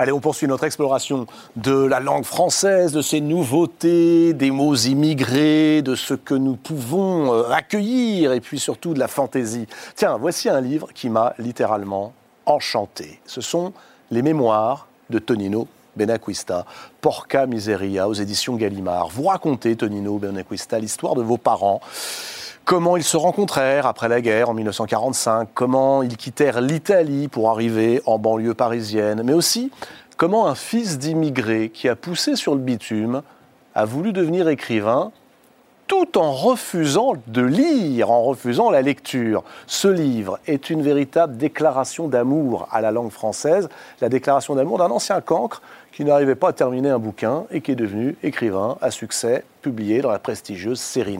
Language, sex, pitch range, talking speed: French, male, 115-160 Hz, 160 wpm